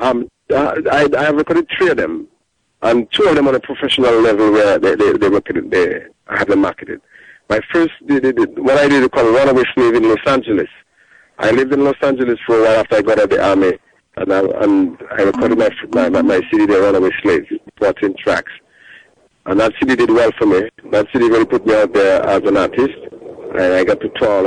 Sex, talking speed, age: male, 225 wpm, 50-69